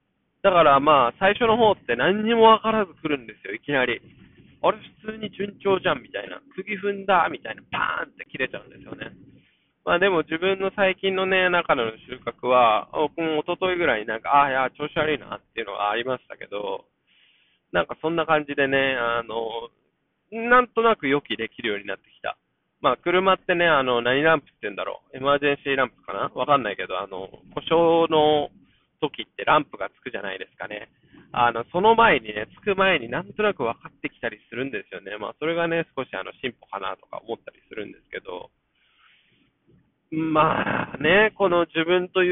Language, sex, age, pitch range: Japanese, male, 20-39, 135-190 Hz